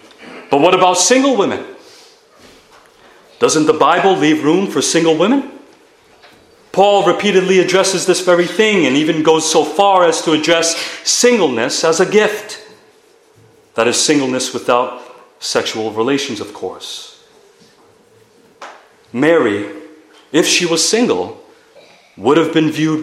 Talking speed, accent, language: 125 wpm, American, English